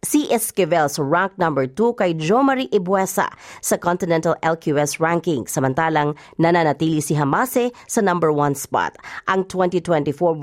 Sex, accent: female, native